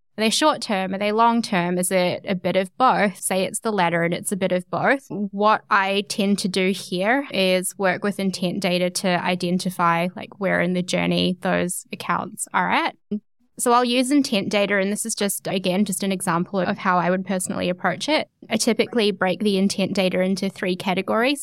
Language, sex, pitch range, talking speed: English, female, 180-215 Hz, 205 wpm